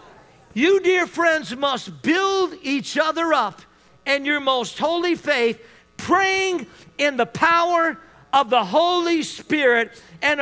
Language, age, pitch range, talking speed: English, 50-69, 270-340 Hz, 125 wpm